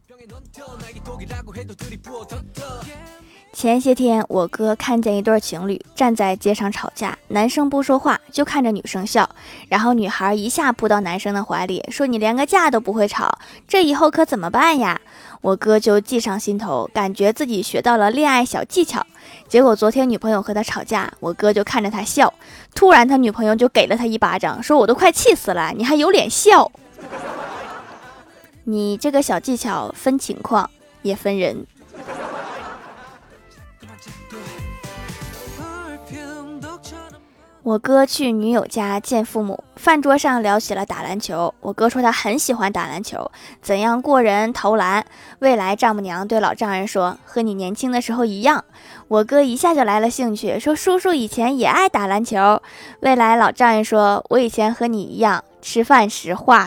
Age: 20-39